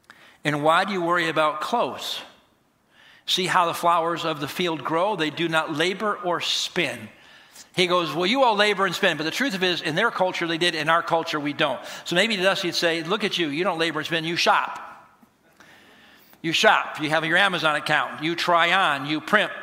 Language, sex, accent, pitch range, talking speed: English, male, American, 155-185 Hz, 225 wpm